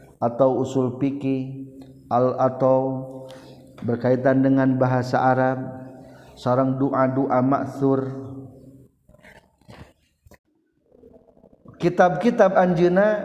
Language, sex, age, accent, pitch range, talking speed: Indonesian, male, 50-69, native, 120-140 Hz, 60 wpm